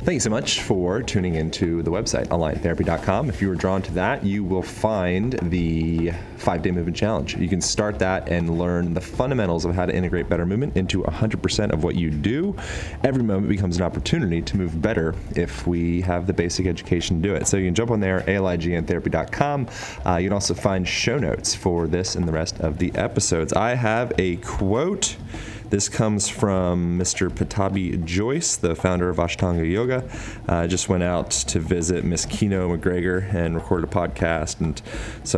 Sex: male